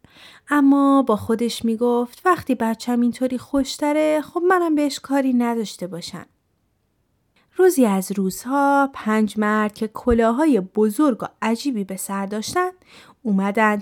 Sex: female